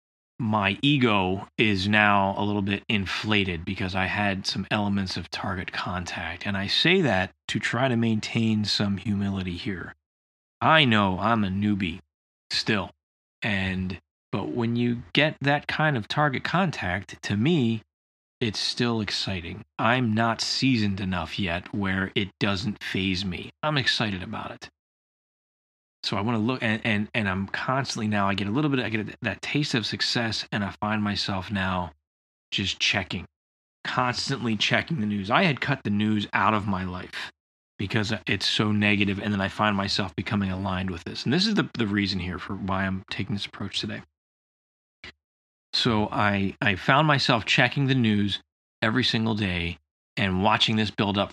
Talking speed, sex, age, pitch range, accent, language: 170 wpm, male, 20-39, 95-115 Hz, American, English